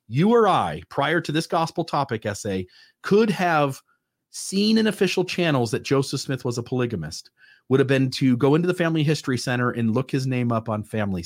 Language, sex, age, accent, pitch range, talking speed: English, male, 40-59, American, 130-180 Hz, 205 wpm